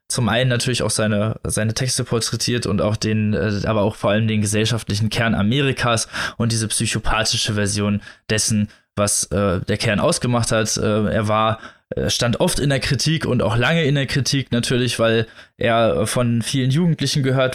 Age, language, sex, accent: 20-39, German, male, German